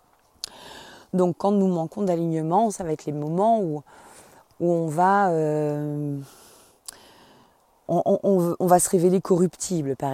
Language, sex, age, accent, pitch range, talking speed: French, female, 30-49, French, 155-190 Hz, 130 wpm